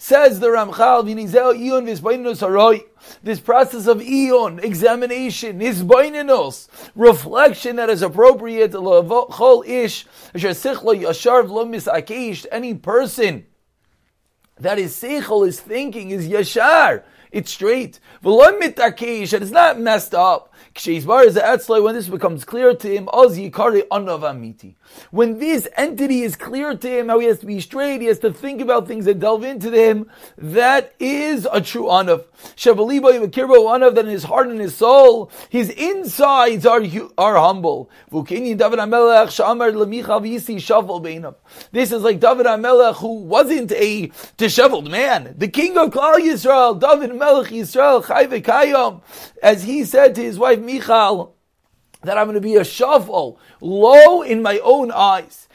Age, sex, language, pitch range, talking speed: 30-49, male, English, 210-255 Hz, 135 wpm